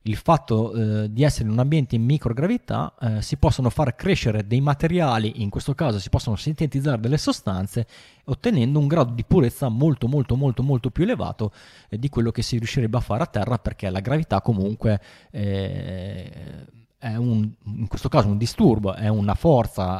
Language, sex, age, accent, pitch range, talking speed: Italian, male, 20-39, native, 110-135 Hz, 175 wpm